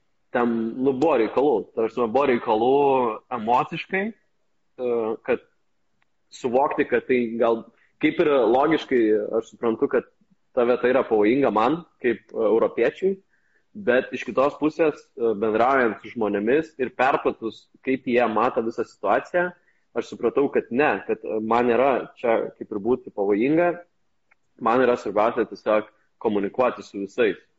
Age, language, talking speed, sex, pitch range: 20-39, English, 130 wpm, male, 110-140 Hz